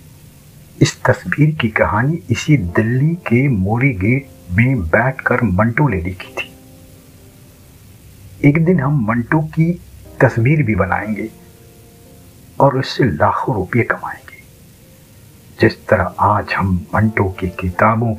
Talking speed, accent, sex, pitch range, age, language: 115 wpm, native, male, 100-135 Hz, 60-79, Hindi